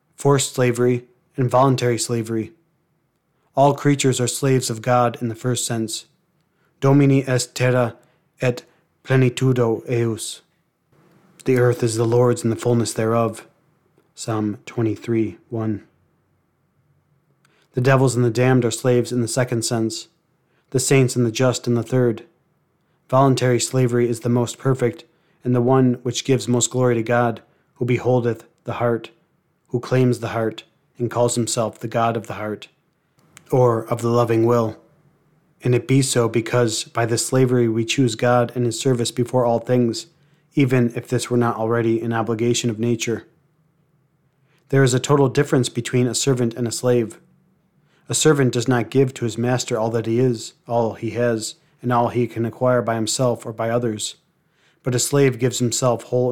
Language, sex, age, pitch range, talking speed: English, male, 30-49, 115-135 Hz, 165 wpm